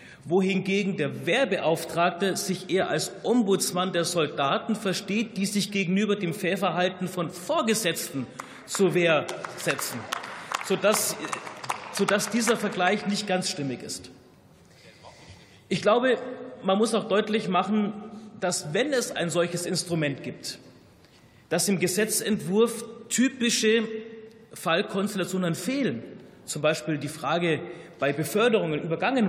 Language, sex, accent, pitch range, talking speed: German, male, German, 170-215 Hz, 110 wpm